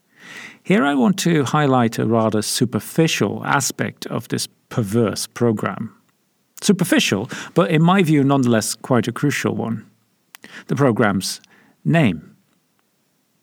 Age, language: 50-69, English